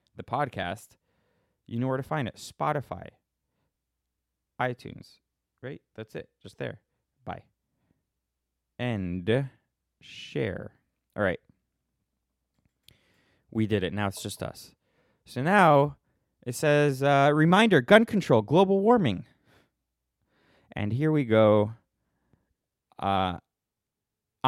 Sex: male